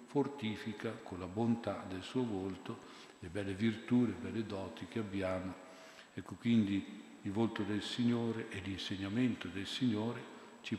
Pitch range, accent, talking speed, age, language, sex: 100-115 Hz, native, 145 wpm, 50-69, Italian, male